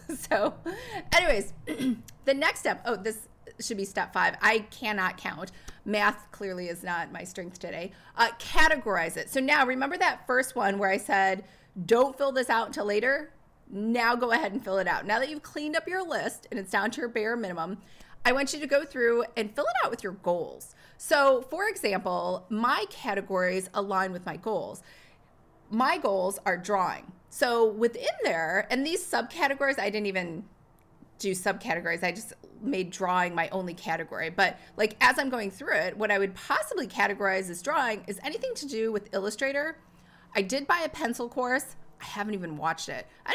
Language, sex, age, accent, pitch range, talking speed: English, female, 30-49, American, 195-265 Hz, 190 wpm